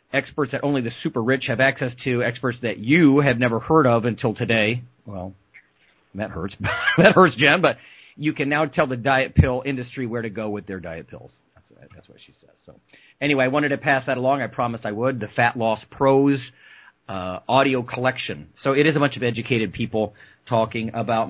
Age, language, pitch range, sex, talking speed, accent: 40-59, English, 110-140 Hz, male, 210 wpm, American